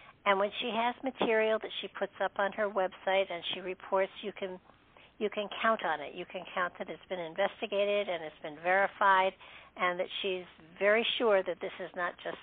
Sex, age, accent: female, 60-79, American